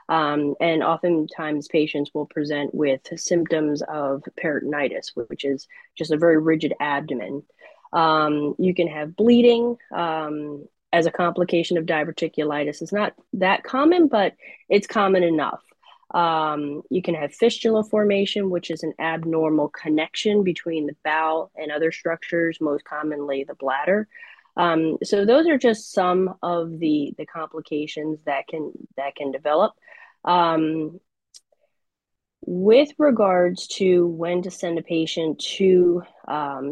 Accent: American